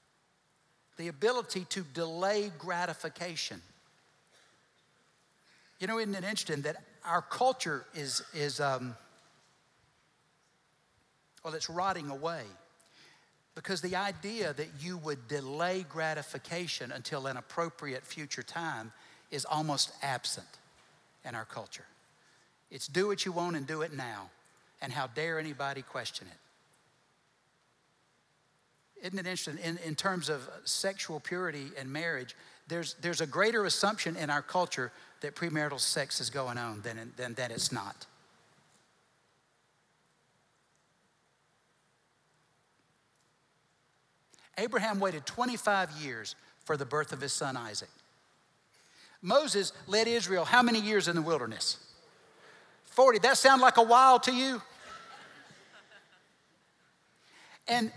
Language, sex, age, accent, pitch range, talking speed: English, male, 60-79, American, 145-195 Hz, 115 wpm